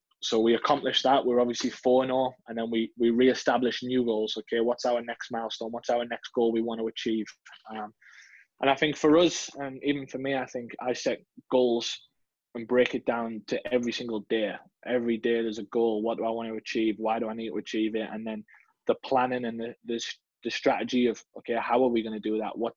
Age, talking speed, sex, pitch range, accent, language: 20-39, 235 wpm, male, 115-125 Hz, British, English